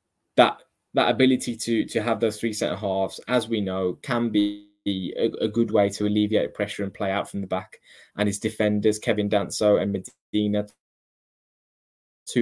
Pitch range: 100-115 Hz